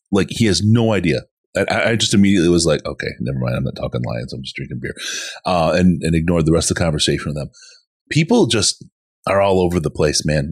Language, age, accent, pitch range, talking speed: English, 30-49, American, 85-115 Hz, 235 wpm